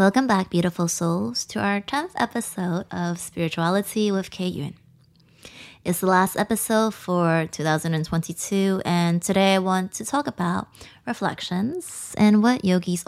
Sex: female